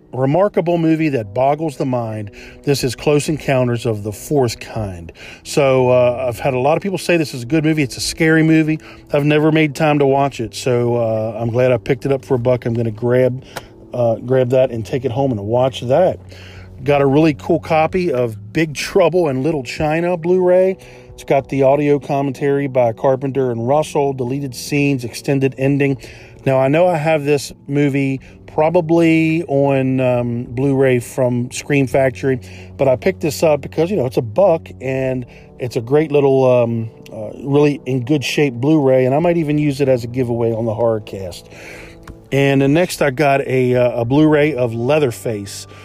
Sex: male